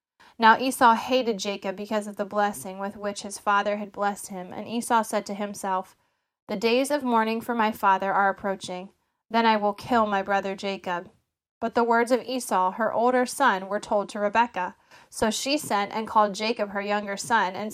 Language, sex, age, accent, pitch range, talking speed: English, female, 20-39, American, 195-230 Hz, 195 wpm